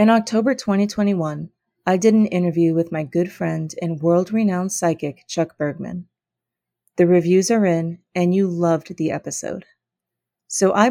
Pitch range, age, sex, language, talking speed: 165-195 Hz, 30-49, female, English, 150 wpm